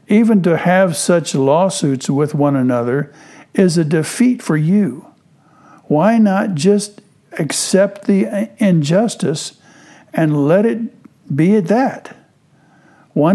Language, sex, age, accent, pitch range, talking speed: English, male, 60-79, American, 145-195 Hz, 115 wpm